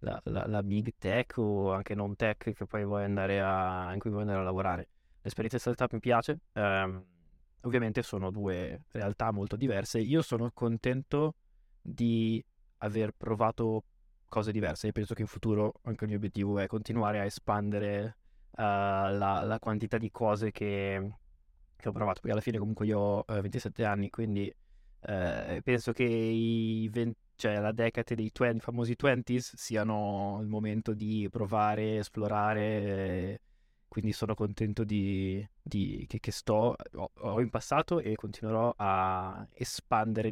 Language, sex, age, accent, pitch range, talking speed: Italian, male, 20-39, native, 100-115 Hz, 160 wpm